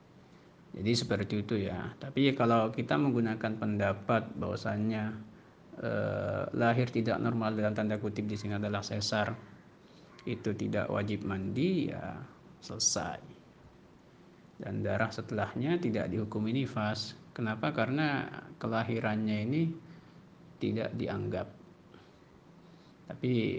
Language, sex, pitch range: Indonesian, male, 100-115 Hz